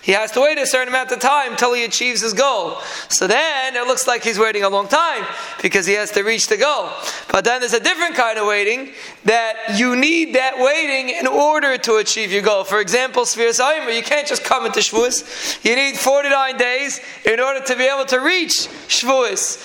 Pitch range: 240-280 Hz